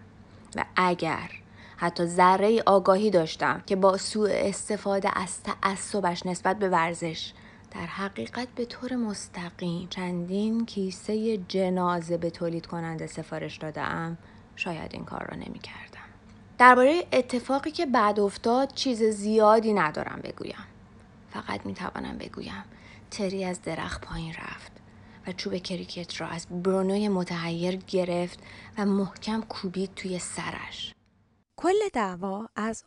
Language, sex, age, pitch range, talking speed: Persian, female, 30-49, 170-215 Hz, 120 wpm